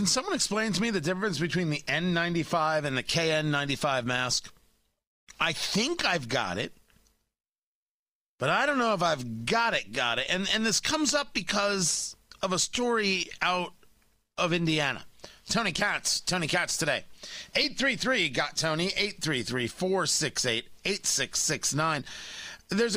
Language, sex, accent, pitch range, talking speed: English, male, American, 120-190 Hz, 160 wpm